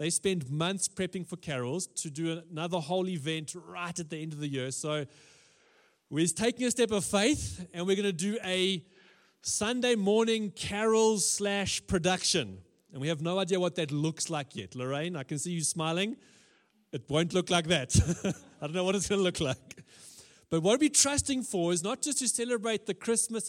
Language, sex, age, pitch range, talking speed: English, male, 30-49, 135-195 Hz, 200 wpm